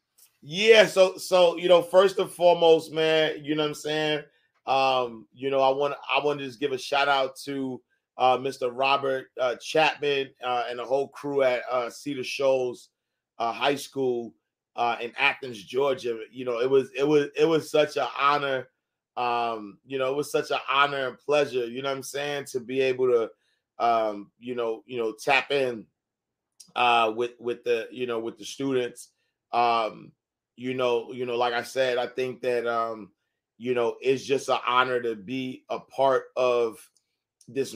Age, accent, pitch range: 30-49, American, 125-150 Hz